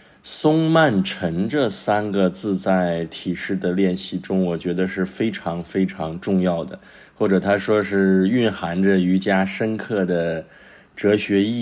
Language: Chinese